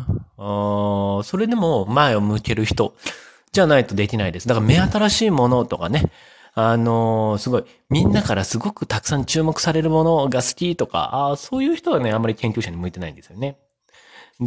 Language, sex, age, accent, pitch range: Japanese, male, 30-49, native, 105-160 Hz